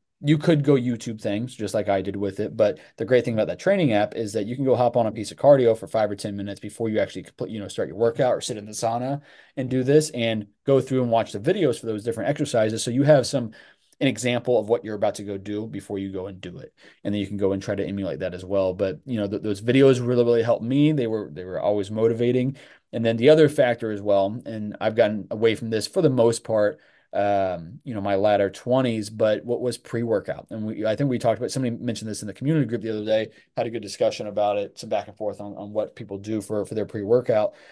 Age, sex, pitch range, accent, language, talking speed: 20-39, male, 100-125 Hz, American, English, 275 wpm